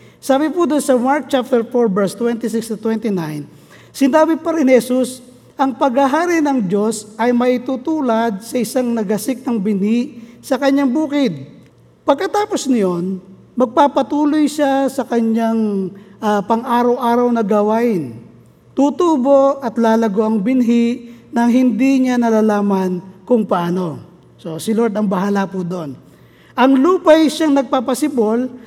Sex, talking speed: male, 120 wpm